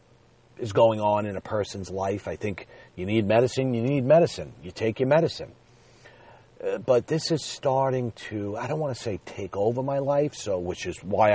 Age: 40-59